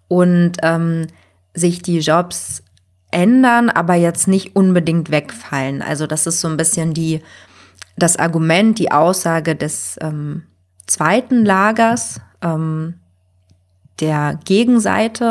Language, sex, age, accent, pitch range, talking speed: German, female, 20-39, German, 160-200 Hz, 115 wpm